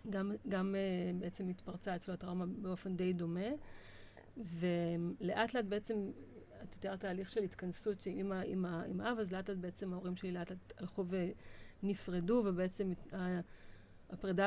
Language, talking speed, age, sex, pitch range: Hebrew, 140 wpm, 40-59, female, 175-200 Hz